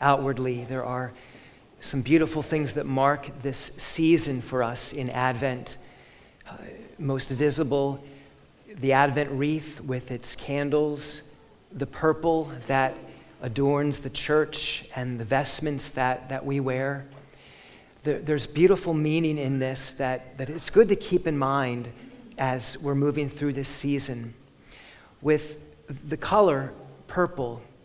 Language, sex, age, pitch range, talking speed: English, male, 40-59, 135-155 Hz, 125 wpm